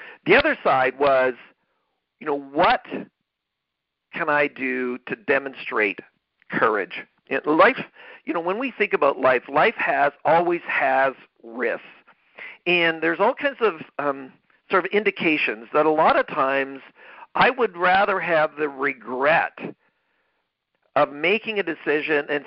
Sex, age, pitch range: male, 50-69, 135-175 Hz